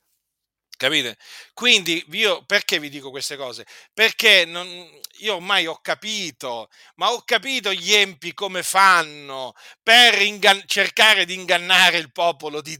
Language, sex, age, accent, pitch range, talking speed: Italian, male, 50-69, native, 170-235 Hz, 135 wpm